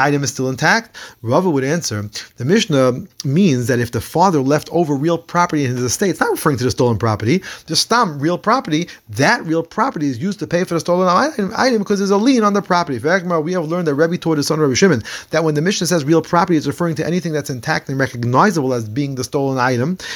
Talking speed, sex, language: 240 wpm, male, English